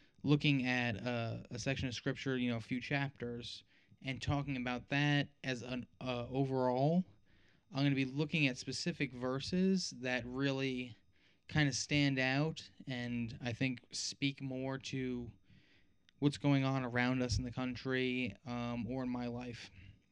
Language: English